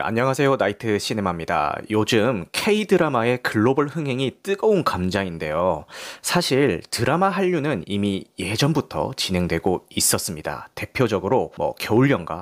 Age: 30-49